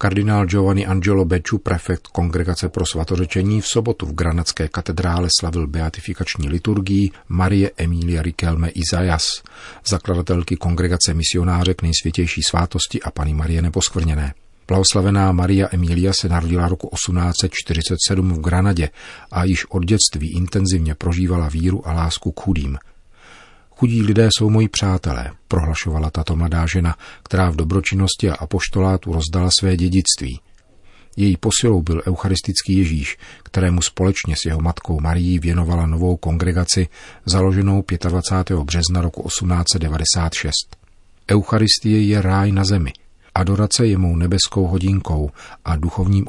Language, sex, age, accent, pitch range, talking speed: Czech, male, 40-59, native, 85-95 Hz, 125 wpm